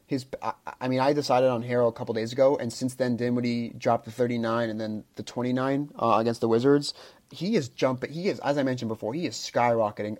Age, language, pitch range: 30-49, English, 115-140 Hz